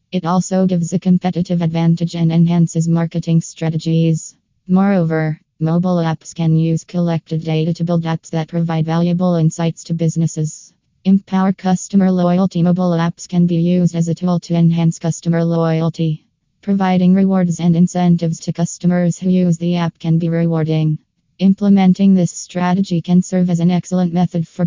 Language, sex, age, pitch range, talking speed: English, female, 20-39, 165-175 Hz, 155 wpm